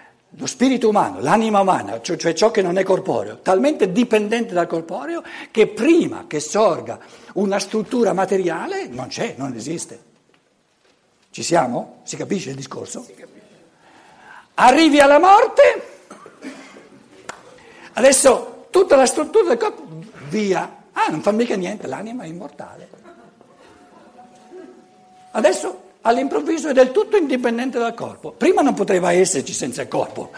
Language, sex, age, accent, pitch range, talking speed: Italian, male, 60-79, native, 170-245 Hz, 130 wpm